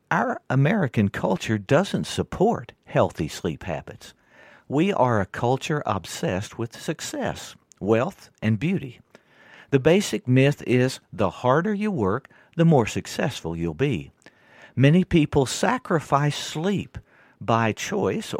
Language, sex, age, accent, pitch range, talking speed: English, male, 50-69, American, 100-145 Hz, 120 wpm